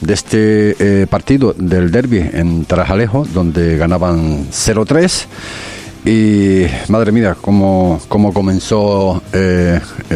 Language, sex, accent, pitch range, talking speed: Spanish, male, Spanish, 85-105 Hz, 105 wpm